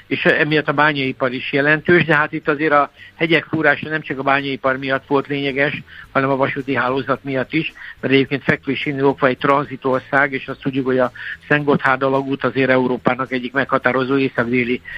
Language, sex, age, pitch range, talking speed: Hungarian, male, 60-79, 135-150 Hz, 175 wpm